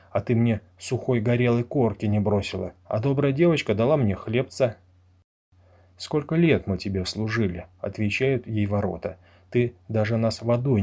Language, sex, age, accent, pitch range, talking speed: Russian, male, 30-49, native, 95-120 Hz, 145 wpm